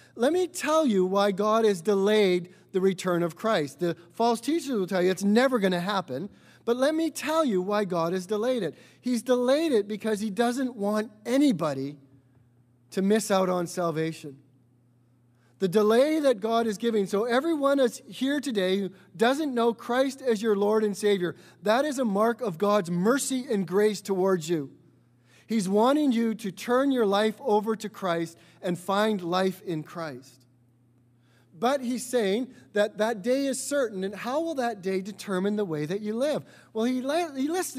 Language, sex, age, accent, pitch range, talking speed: English, male, 40-59, American, 160-235 Hz, 185 wpm